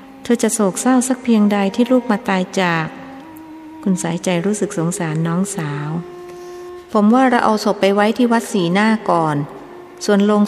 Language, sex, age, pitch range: Thai, female, 60-79, 175-230 Hz